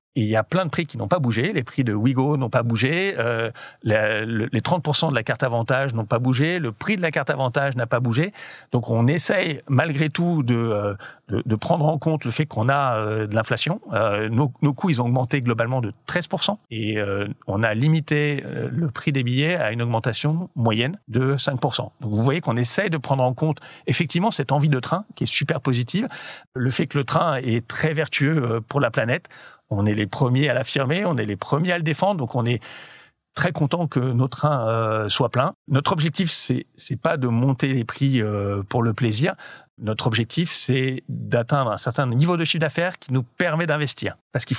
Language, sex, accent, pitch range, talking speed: French, male, French, 120-155 Hz, 215 wpm